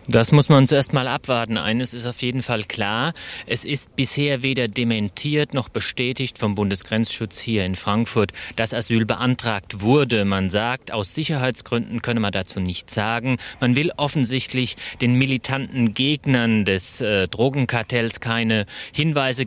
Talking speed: 150 wpm